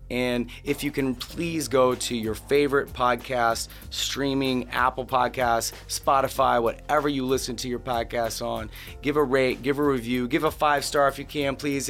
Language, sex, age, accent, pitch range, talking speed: English, male, 30-49, American, 110-135 Hz, 175 wpm